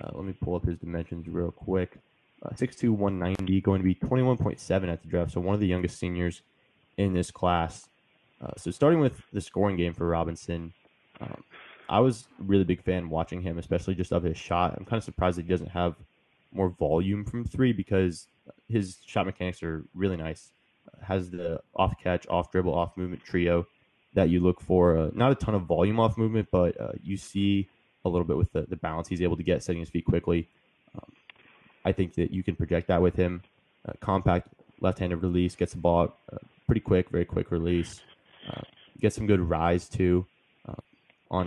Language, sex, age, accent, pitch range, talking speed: English, male, 20-39, American, 85-100 Hz, 200 wpm